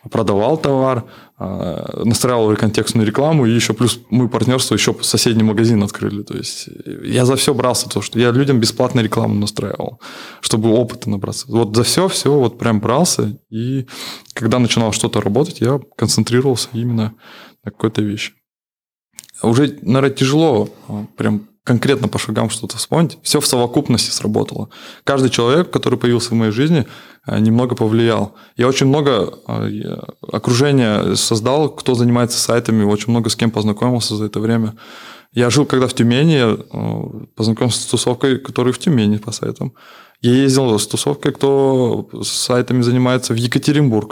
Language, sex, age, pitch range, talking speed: Russian, male, 20-39, 105-125 Hz, 145 wpm